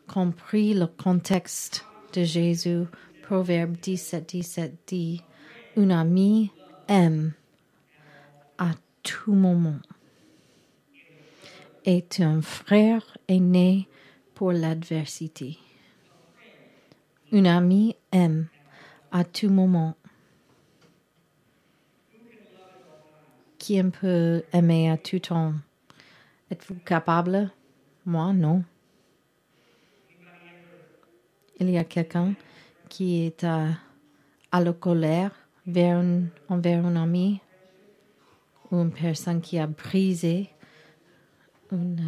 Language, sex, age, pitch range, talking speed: French, female, 40-59, 160-190 Hz, 85 wpm